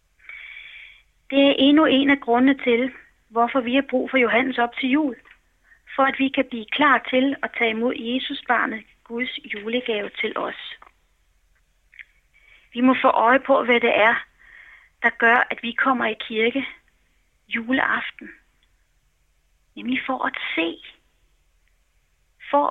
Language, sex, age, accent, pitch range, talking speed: Danish, female, 30-49, native, 170-270 Hz, 140 wpm